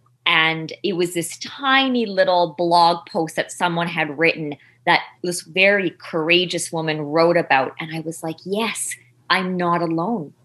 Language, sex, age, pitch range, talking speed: English, female, 20-39, 150-180 Hz, 155 wpm